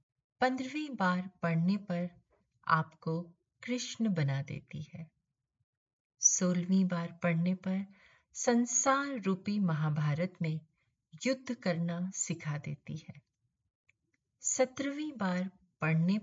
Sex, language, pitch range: female, Hindi, 150-200 Hz